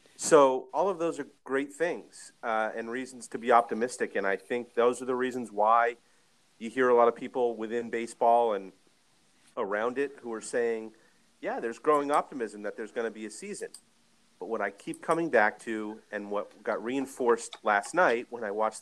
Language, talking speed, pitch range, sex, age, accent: English, 200 wpm, 110-145 Hz, male, 40-59, American